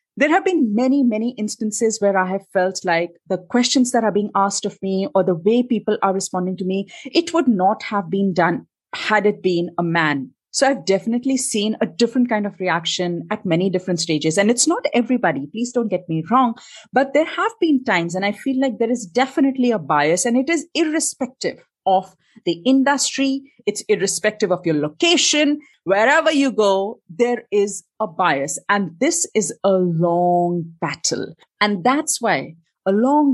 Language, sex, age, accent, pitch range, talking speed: English, female, 30-49, Indian, 185-255 Hz, 185 wpm